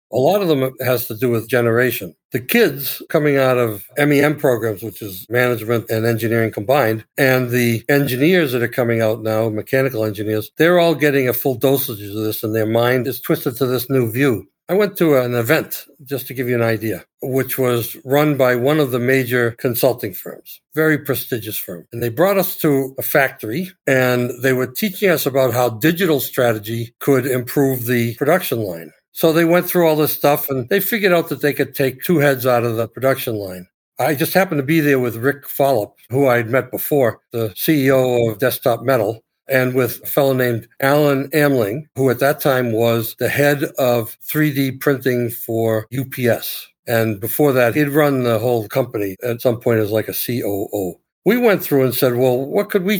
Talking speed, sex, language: 200 wpm, male, English